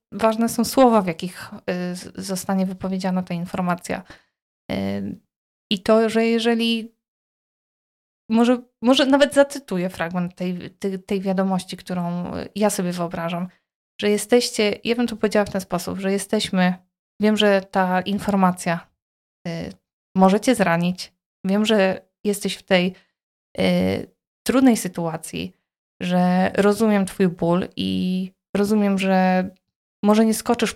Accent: native